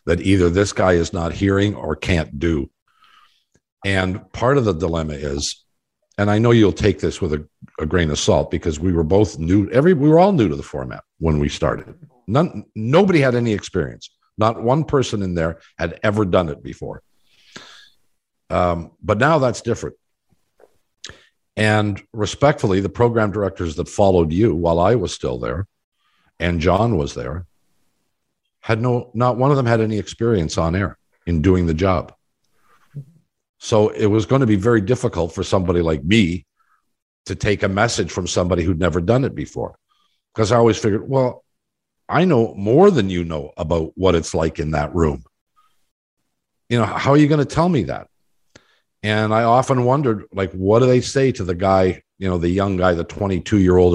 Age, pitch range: 50-69, 85-115 Hz